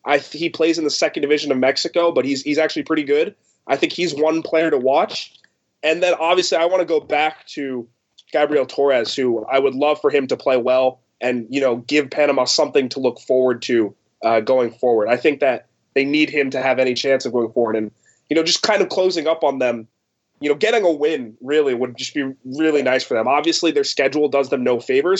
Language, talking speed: English, 235 wpm